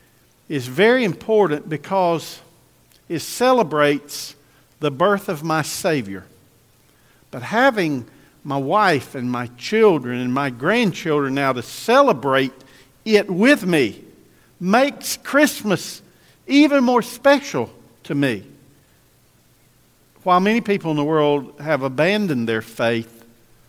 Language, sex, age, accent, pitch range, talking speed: English, male, 50-69, American, 135-205 Hz, 110 wpm